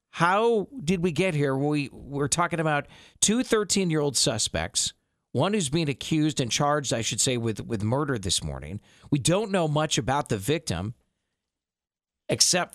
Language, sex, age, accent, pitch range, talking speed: English, male, 40-59, American, 110-150 Hz, 160 wpm